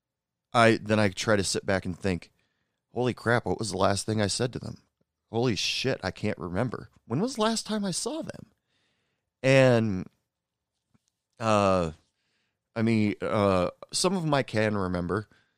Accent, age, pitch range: American, 30-49, 95-115 Hz